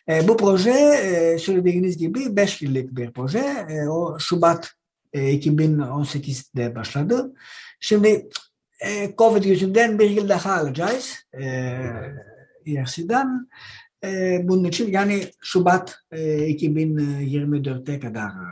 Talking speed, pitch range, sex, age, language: 135 wpm, 150-220 Hz, male, 60-79, Turkish